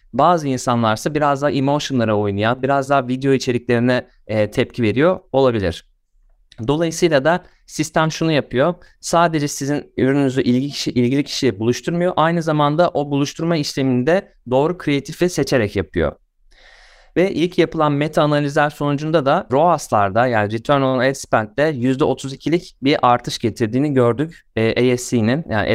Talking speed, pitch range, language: 130 wpm, 120-155 Hz, Turkish